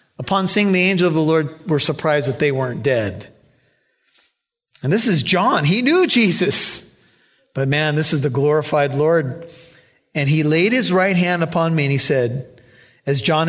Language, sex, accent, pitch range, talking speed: English, male, American, 125-165 Hz, 180 wpm